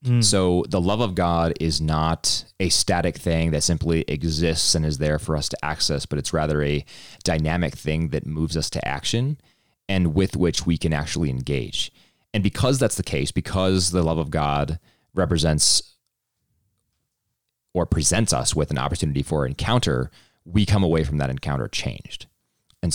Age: 30-49